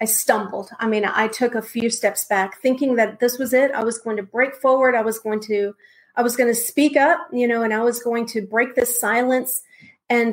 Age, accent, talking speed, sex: 40-59, American, 245 wpm, female